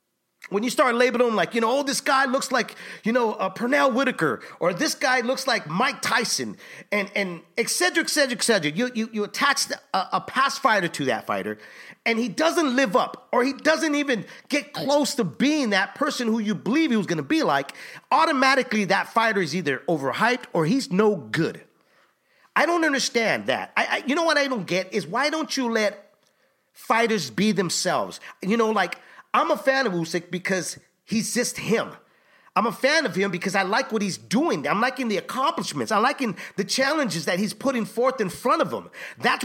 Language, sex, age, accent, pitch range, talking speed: English, male, 40-59, American, 205-275 Hz, 210 wpm